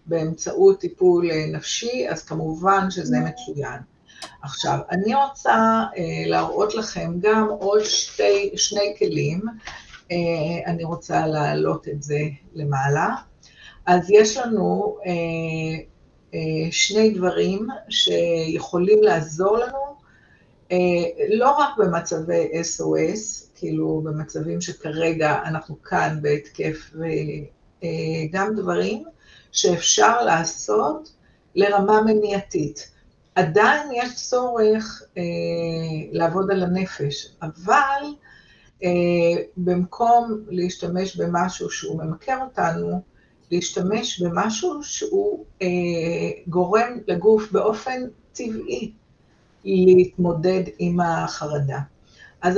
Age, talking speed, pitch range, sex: 50-69, 90 wpm, 160-215 Hz, female